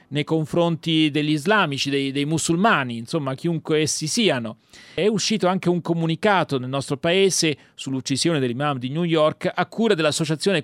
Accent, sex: native, male